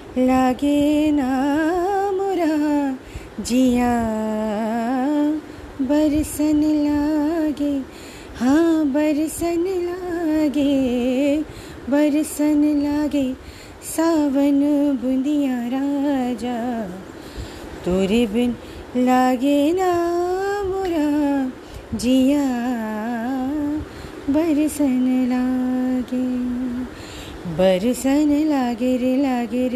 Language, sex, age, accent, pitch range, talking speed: Hindi, female, 30-49, native, 255-300 Hz, 50 wpm